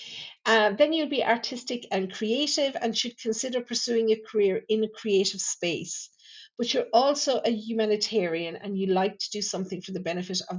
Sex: female